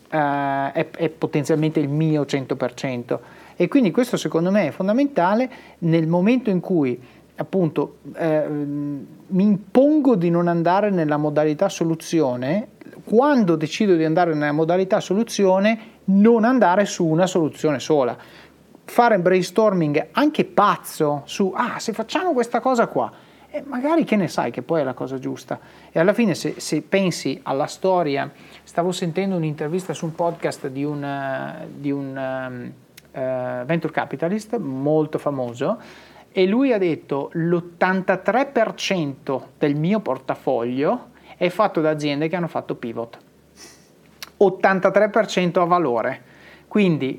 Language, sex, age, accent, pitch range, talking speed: Italian, male, 30-49, native, 150-200 Hz, 130 wpm